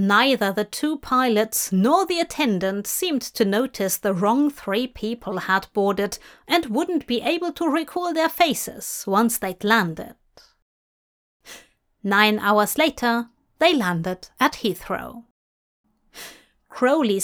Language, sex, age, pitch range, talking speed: English, female, 30-49, 200-265 Hz, 120 wpm